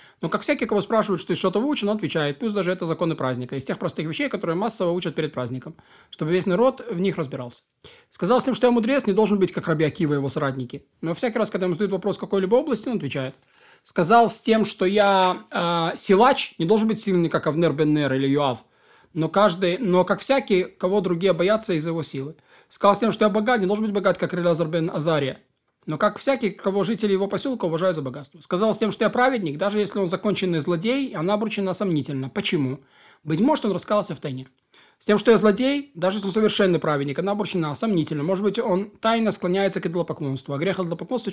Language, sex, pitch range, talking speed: Russian, male, 160-210 Hz, 215 wpm